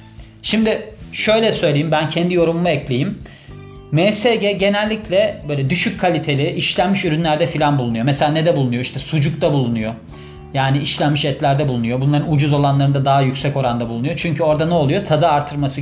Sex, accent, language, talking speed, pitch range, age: male, native, Turkish, 150 wpm, 140-175 Hz, 30-49